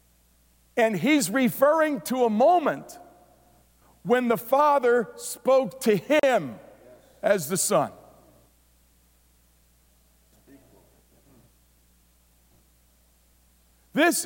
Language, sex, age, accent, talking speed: English, male, 50-69, American, 65 wpm